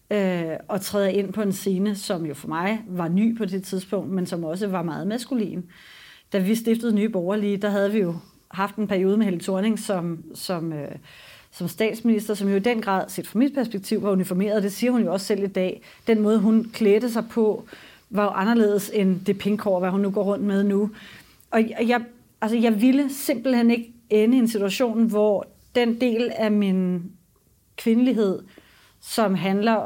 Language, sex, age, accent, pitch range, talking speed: English, female, 30-49, Danish, 190-225 Hz, 195 wpm